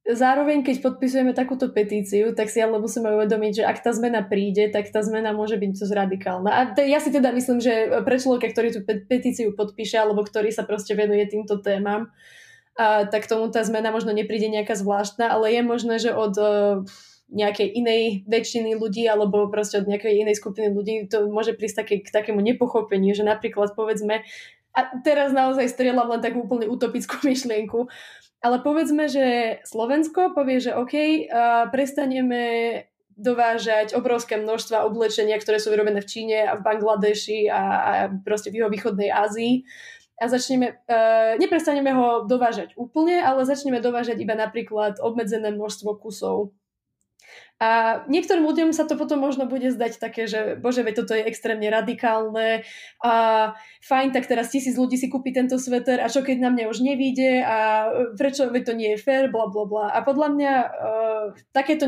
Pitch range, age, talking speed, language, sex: 215-250 Hz, 20-39, 170 wpm, Slovak, female